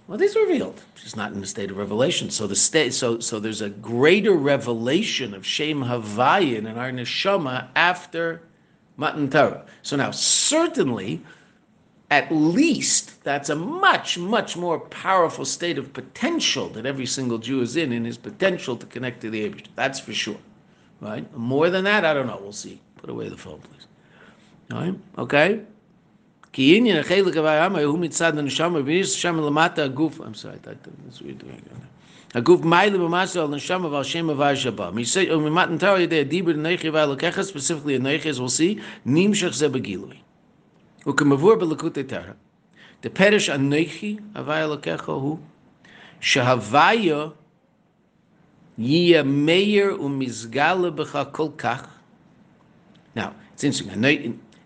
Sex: male